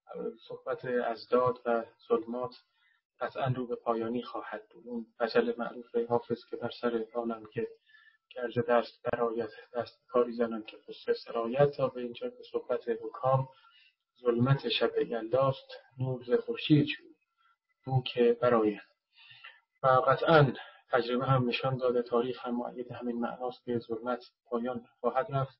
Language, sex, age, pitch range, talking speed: Persian, male, 30-49, 120-165 Hz, 140 wpm